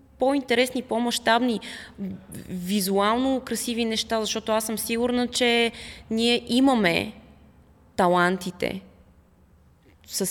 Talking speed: 85 wpm